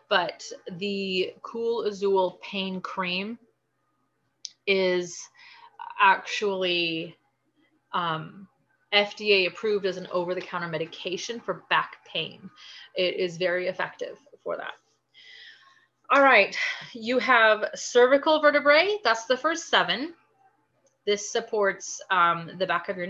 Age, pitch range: 30-49, 180-260 Hz